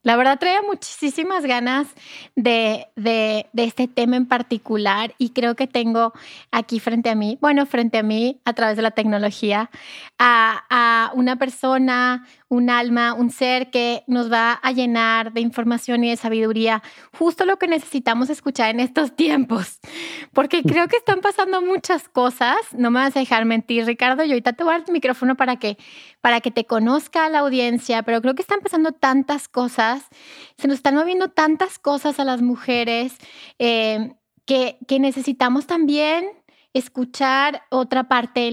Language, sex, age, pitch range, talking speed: Spanish, female, 20-39, 235-290 Hz, 170 wpm